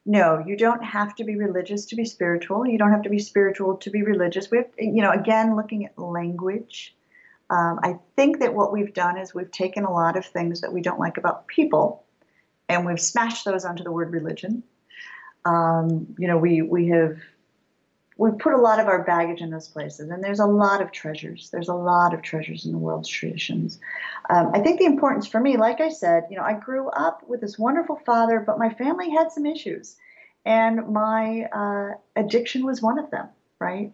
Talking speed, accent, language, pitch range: 210 wpm, American, English, 175-225 Hz